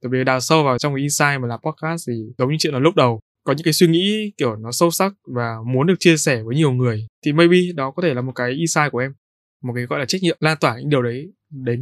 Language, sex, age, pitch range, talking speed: Vietnamese, male, 20-39, 130-170 Hz, 295 wpm